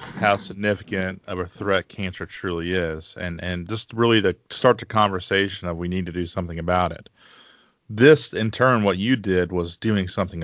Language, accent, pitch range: English, American, 85-100 Hz